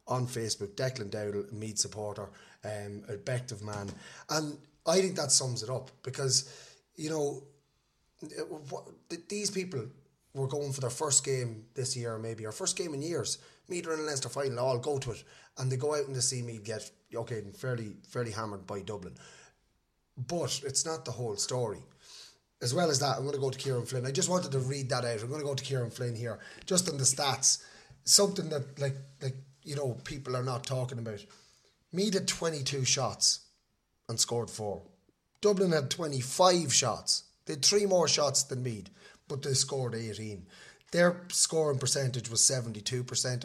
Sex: male